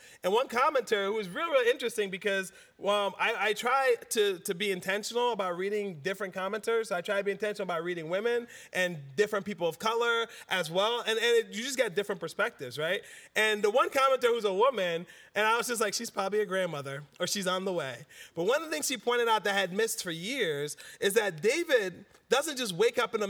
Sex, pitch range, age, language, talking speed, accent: male, 195-270 Hz, 30-49, English, 230 wpm, American